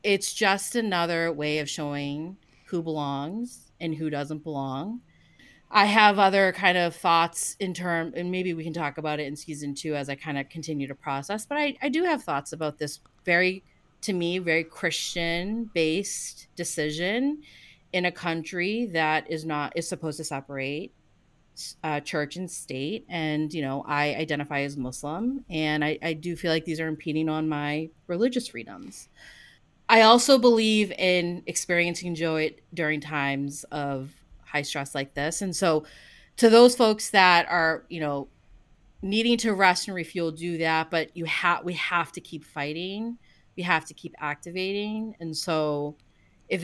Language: English